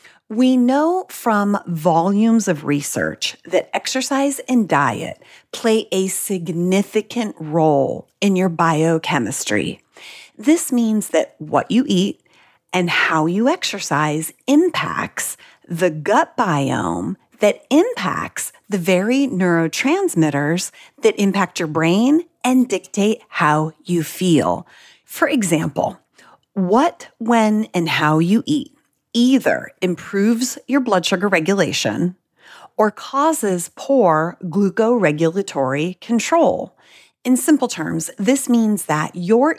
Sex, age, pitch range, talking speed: female, 30-49, 165-240 Hz, 110 wpm